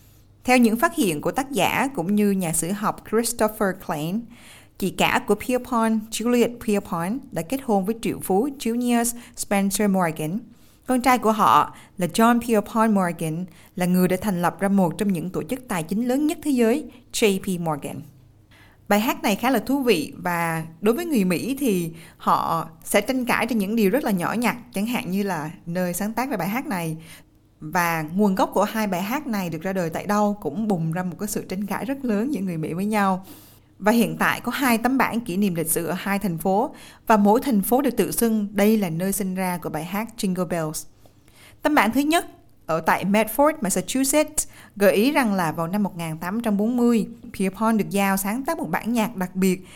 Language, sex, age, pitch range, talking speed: Vietnamese, female, 20-39, 180-230 Hz, 210 wpm